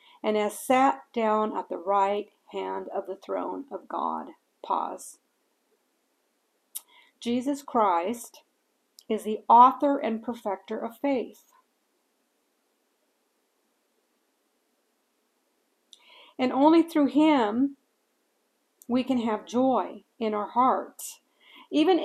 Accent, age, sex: American, 50-69, female